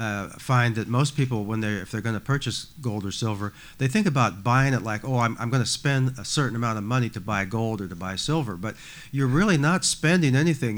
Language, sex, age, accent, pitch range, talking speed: English, male, 50-69, American, 110-130 Hz, 250 wpm